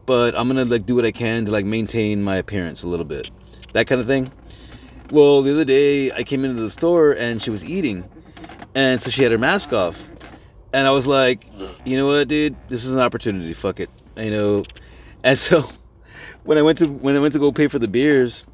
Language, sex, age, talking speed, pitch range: English, male, 30-49, 230 wpm, 105-135 Hz